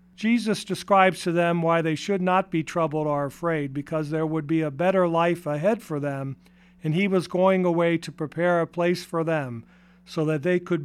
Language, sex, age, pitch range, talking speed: English, male, 50-69, 155-185 Hz, 205 wpm